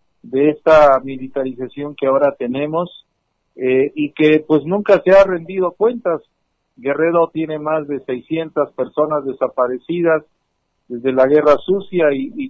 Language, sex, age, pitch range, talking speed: Spanish, male, 50-69, 130-165 Hz, 135 wpm